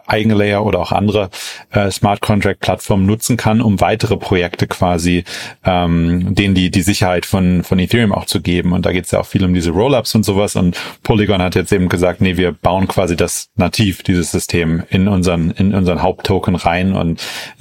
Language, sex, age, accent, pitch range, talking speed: German, male, 30-49, German, 90-105 Hz, 195 wpm